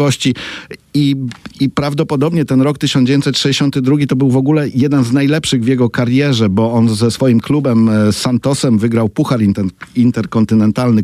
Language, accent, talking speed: Polish, native, 135 wpm